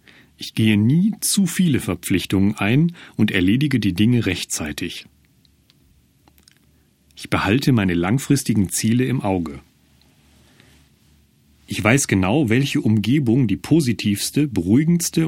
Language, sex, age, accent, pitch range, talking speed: German, male, 40-59, German, 95-140 Hz, 105 wpm